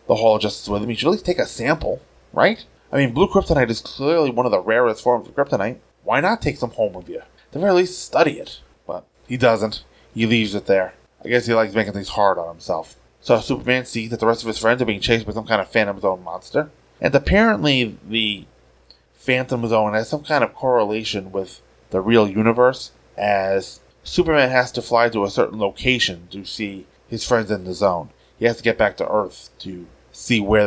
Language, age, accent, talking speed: English, 20-39, American, 225 wpm